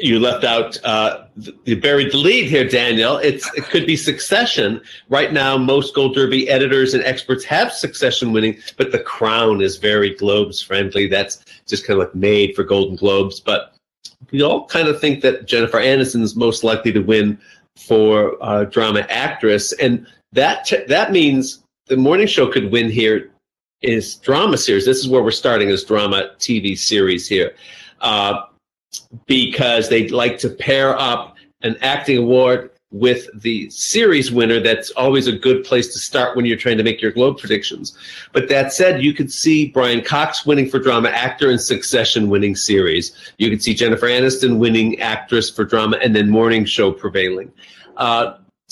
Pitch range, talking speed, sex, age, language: 105-130 Hz, 175 wpm, male, 40-59, English